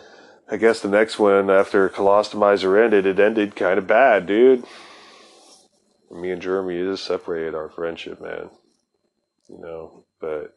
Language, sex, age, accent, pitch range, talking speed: English, male, 30-49, American, 80-100 Hz, 140 wpm